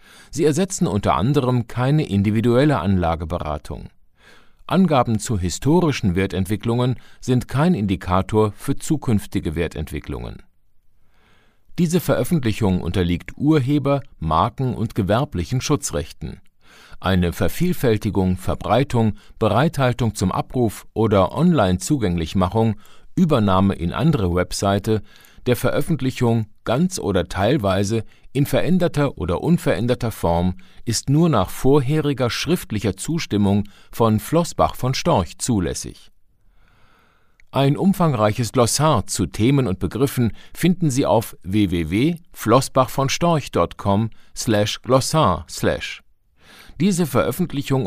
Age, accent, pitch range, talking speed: 50-69, German, 95-140 Hz, 90 wpm